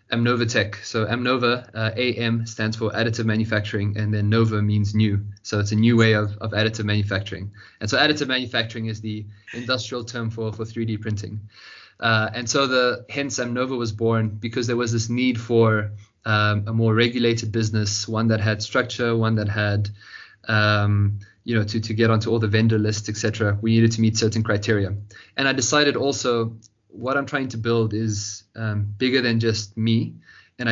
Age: 20-39